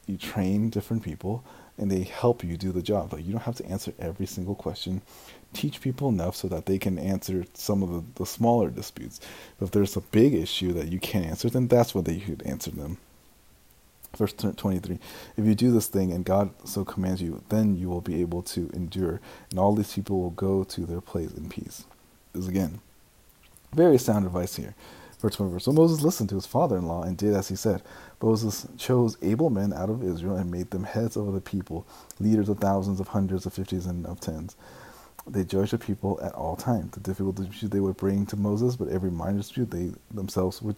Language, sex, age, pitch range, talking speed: English, male, 30-49, 90-105 Hz, 220 wpm